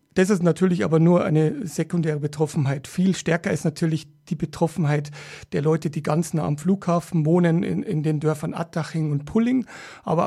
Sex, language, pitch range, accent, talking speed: male, German, 155-185 Hz, German, 175 wpm